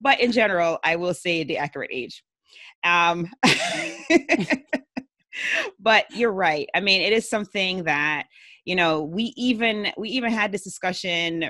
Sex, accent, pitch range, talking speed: female, American, 160-210 Hz, 145 wpm